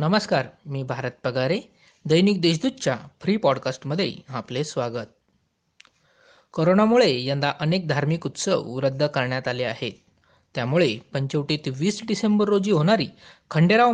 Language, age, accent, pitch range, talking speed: Marathi, 20-39, native, 140-185 Hz, 115 wpm